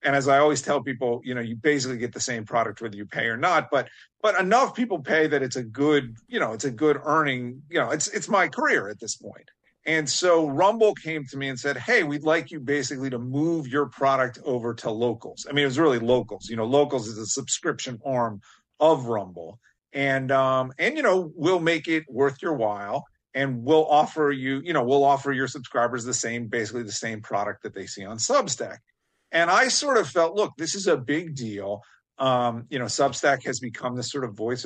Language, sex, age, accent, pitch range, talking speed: English, male, 40-59, American, 125-160 Hz, 225 wpm